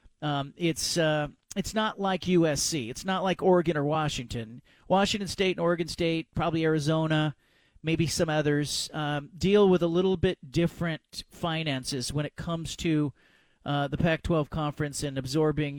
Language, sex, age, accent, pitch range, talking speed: English, male, 40-59, American, 150-185 Hz, 155 wpm